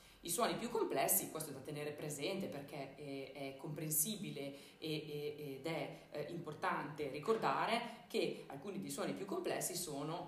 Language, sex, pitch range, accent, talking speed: Italian, female, 145-195 Hz, native, 160 wpm